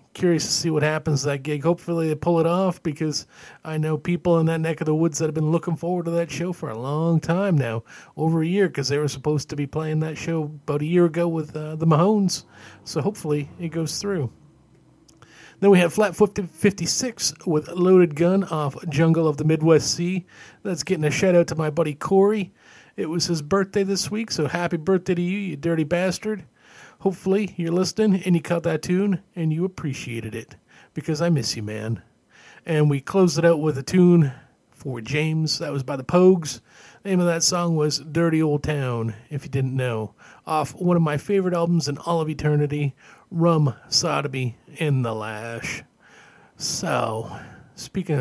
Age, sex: 40-59, male